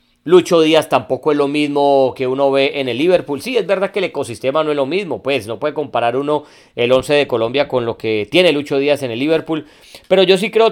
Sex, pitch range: male, 135-170 Hz